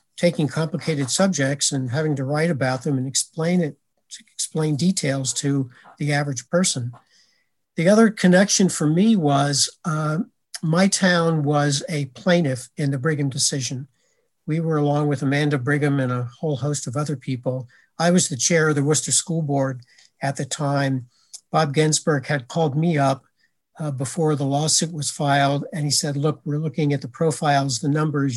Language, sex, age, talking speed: English, male, 60-79, 175 wpm